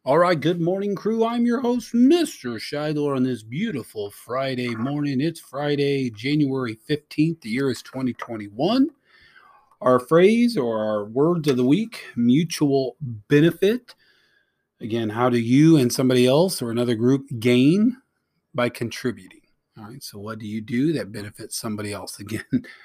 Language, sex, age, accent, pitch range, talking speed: English, male, 40-59, American, 120-160 Hz, 150 wpm